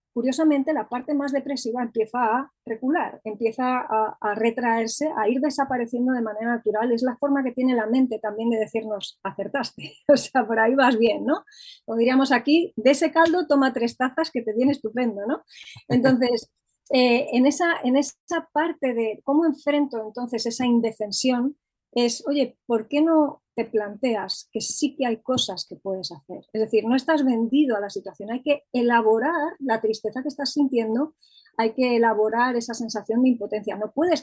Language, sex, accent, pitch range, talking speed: Spanish, female, Spanish, 220-275 Hz, 180 wpm